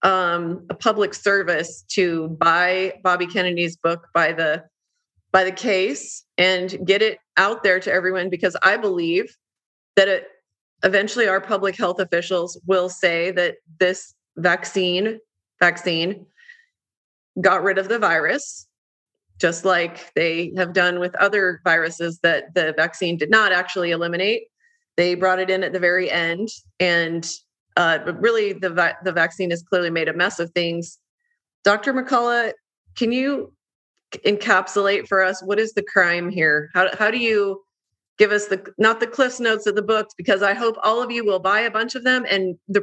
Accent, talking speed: American, 170 wpm